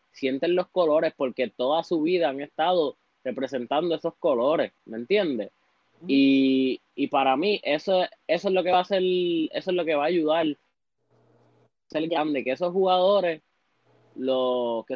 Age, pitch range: 20-39, 135-180 Hz